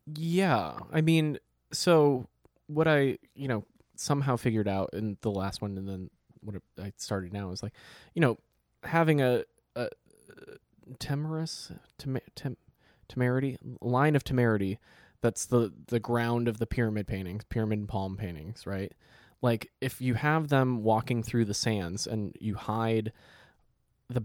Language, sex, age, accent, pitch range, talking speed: English, male, 20-39, American, 100-125 Hz, 145 wpm